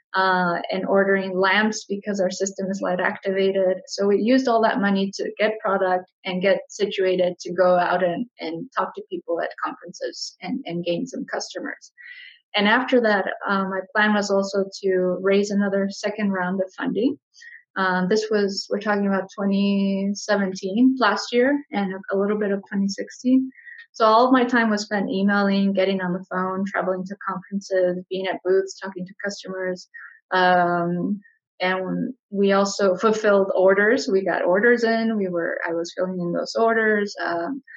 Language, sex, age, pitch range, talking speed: English, female, 20-39, 190-215 Hz, 170 wpm